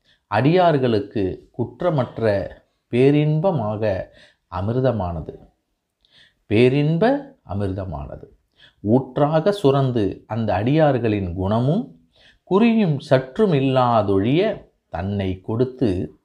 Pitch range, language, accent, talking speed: 120-150 Hz, Tamil, native, 60 wpm